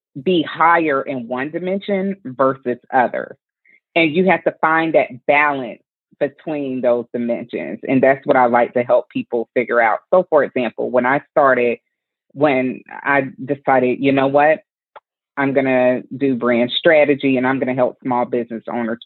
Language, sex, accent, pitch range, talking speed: English, female, American, 125-165 Hz, 165 wpm